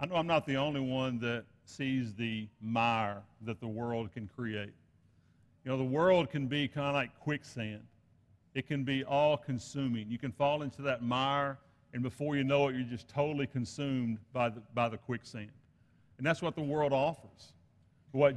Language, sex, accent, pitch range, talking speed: English, male, American, 115-150 Hz, 185 wpm